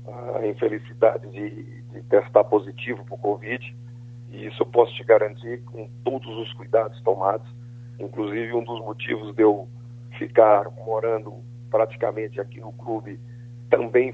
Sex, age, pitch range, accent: male, 40-59, 110-120 Hz, Brazilian